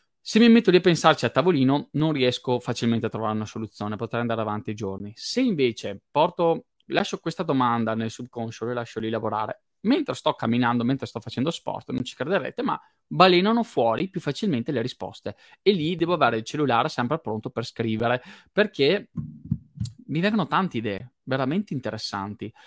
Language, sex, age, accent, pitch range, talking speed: Italian, male, 20-39, native, 115-170 Hz, 175 wpm